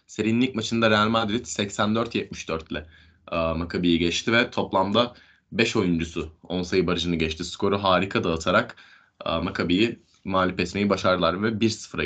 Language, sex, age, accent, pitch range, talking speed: Turkish, male, 20-39, native, 85-110 Hz, 130 wpm